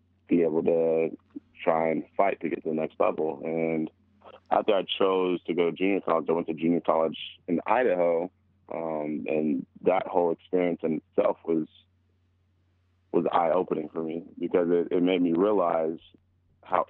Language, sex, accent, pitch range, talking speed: English, male, American, 80-90 Hz, 165 wpm